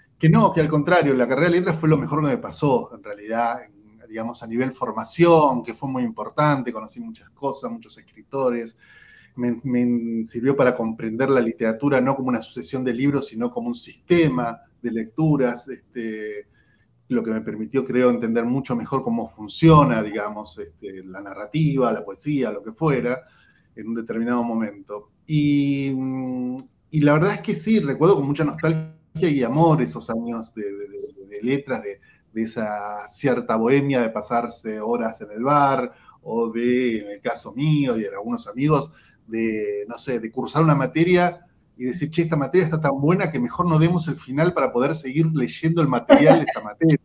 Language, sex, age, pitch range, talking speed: Spanish, male, 30-49, 115-155 Hz, 185 wpm